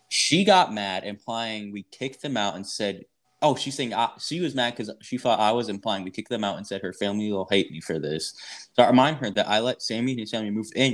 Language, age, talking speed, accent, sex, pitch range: English, 20-39, 270 wpm, American, male, 100-120 Hz